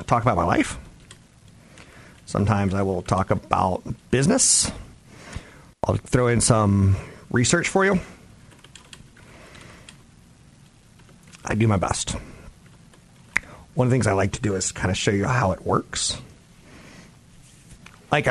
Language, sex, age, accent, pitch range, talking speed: English, male, 40-59, American, 95-125 Hz, 125 wpm